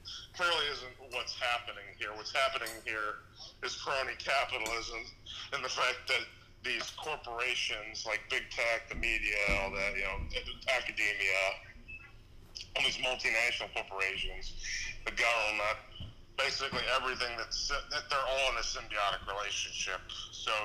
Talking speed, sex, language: 125 wpm, male, English